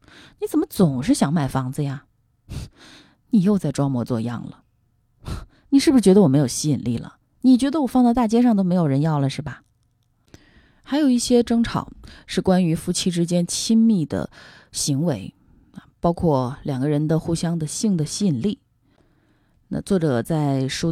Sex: female